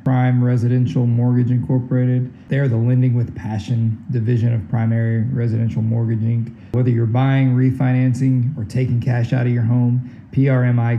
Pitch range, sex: 115-130 Hz, male